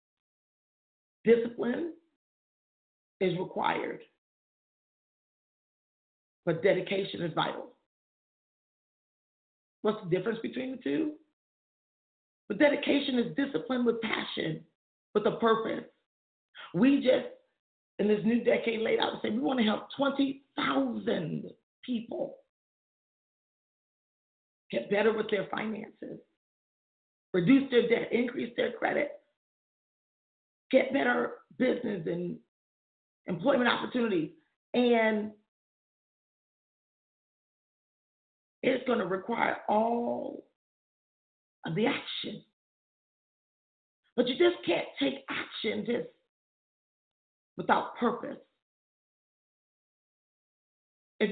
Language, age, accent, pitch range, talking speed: English, 40-59, American, 220-280 Hz, 85 wpm